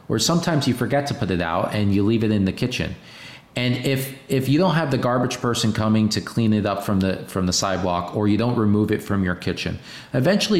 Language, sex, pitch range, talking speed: English, male, 95-125 Hz, 245 wpm